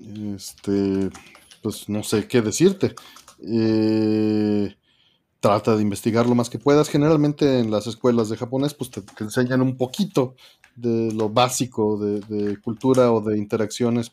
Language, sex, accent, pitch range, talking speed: Spanish, male, Mexican, 105-125 Hz, 150 wpm